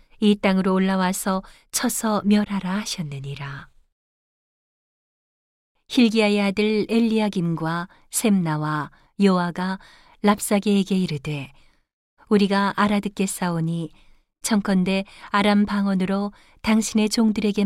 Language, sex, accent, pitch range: Korean, female, native, 175-210 Hz